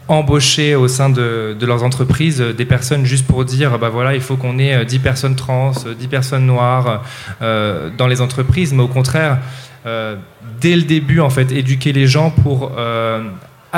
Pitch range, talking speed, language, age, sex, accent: 125-145 Hz, 185 wpm, French, 20-39, male, French